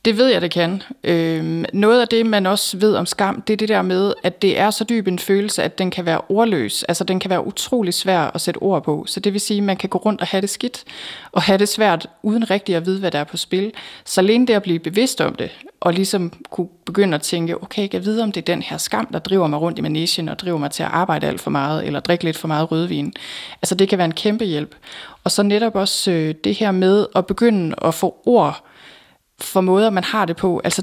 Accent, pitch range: native, 170-215 Hz